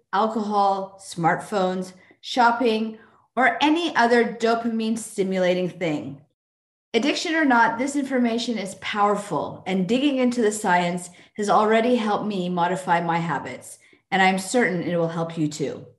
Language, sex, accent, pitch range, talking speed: English, female, American, 175-245 Hz, 135 wpm